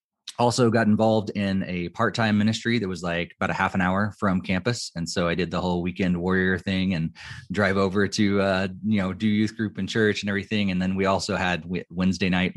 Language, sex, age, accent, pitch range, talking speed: English, male, 20-39, American, 90-100 Hz, 225 wpm